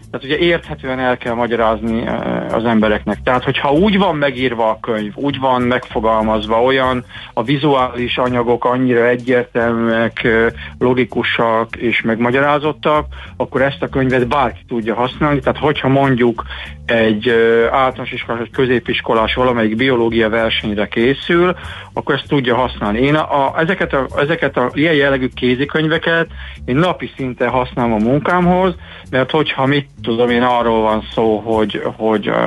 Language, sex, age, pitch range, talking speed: Hungarian, male, 50-69, 115-135 Hz, 140 wpm